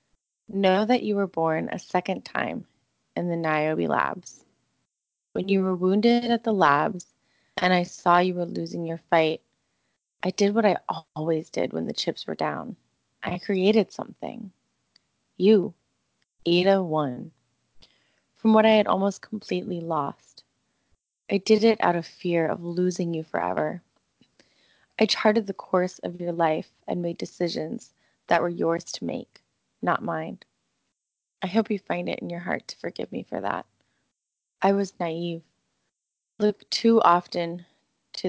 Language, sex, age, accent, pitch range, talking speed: English, female, 20-39, American, 170-210 Hz, 155 wpm